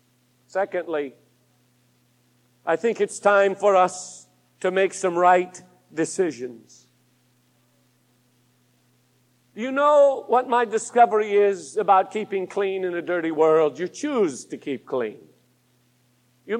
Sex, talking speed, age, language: male, 110 wpm, 50-69, English